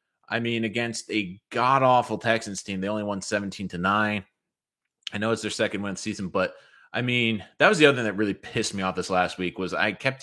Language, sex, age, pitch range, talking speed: English, male, 30-49, 105-140 Hz, 235 wpm